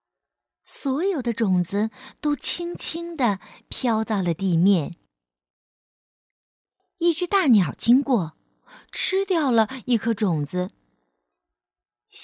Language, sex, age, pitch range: Chinese, female, 50-69, 160-265 Hz